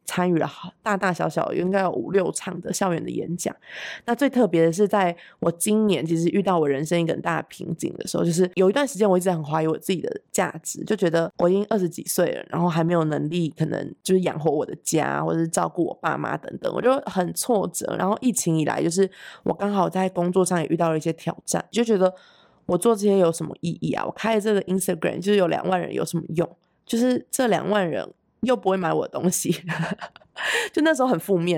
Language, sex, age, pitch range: Chinese, female, 20-39, 170-220 Hz